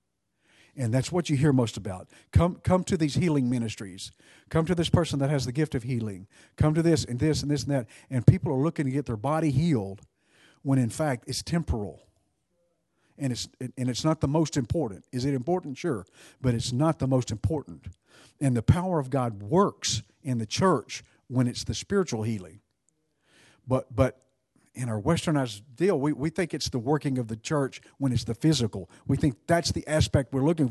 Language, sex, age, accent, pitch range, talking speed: English, male, 50-69, American, 115-150 Hz, 205 wpm